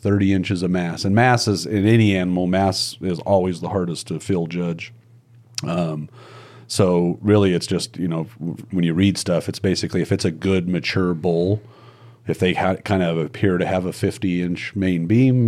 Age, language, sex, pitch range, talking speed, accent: 40-59, English, male, 90-115 Hz, 190 wpm, American